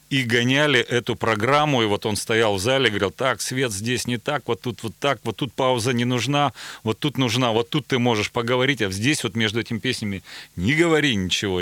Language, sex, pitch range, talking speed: Russian, male, 110-150 Hz, 220 wpm